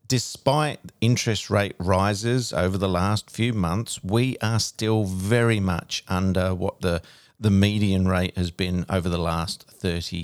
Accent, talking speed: Australian, 150 wpm